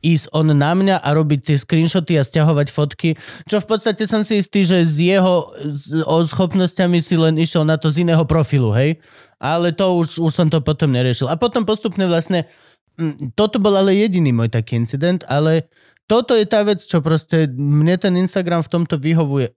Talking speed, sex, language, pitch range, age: 190 wpm, male, Slovak, 145-185 Hz, 20-39